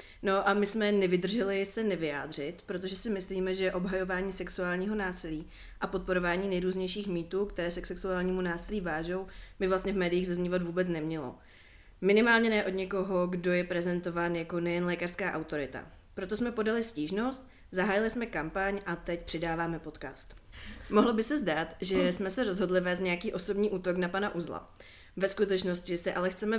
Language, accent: Czech, native